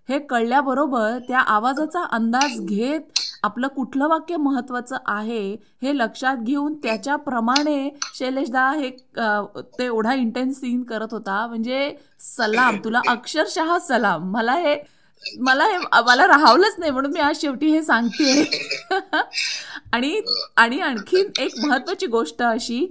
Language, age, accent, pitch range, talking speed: Marathi, 20-39, native, 235-310 Hz, 105 wpm